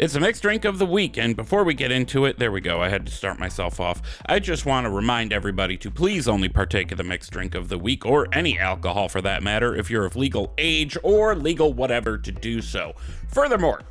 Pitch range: 90-130 Hz